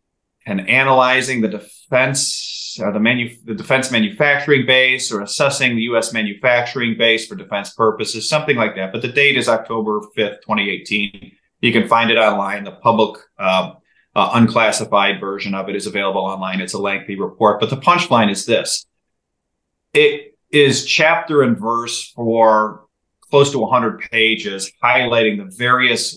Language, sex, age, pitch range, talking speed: English, male, 30-49, 110-130 Hz, 155 wpm